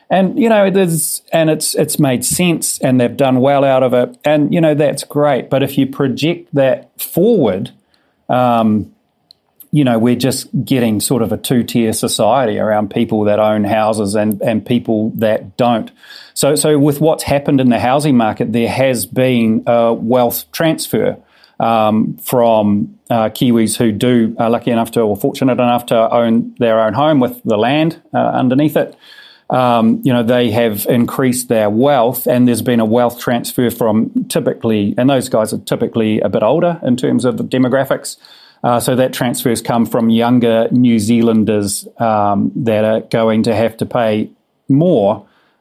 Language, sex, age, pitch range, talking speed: English, male, 40-59, 110-135 Hz, 180 wpm